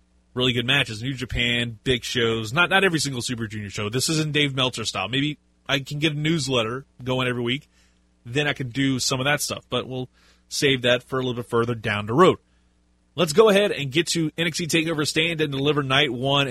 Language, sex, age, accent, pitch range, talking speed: English, male, 30-49, American, 115-155 Hz, 225 wpm